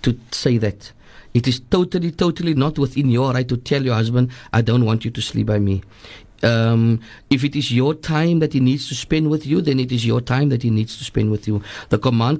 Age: 50-69